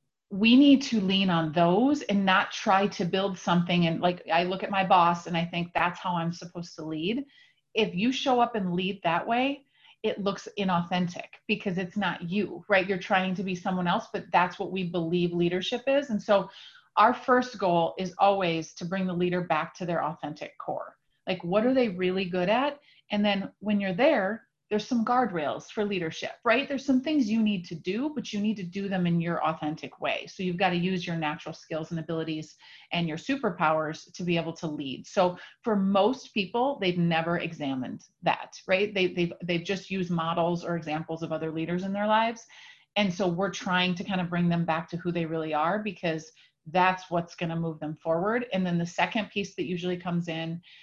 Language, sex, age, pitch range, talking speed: English, female, 30-49, 170-205 Hz, 215 wpm